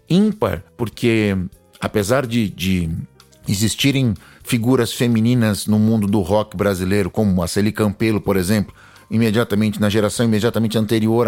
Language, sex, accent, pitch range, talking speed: Portuguese, male, Brazilian, 100-120 Hz, 130 wpm